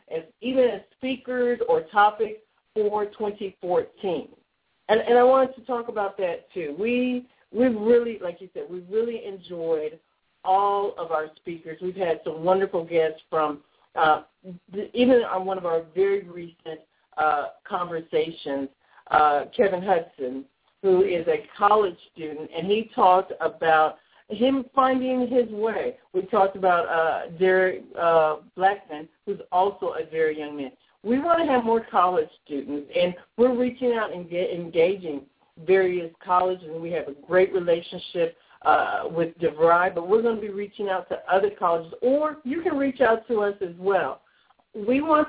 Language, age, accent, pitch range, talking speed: English, 50-69, American, 170-245 Hz, 160 wpm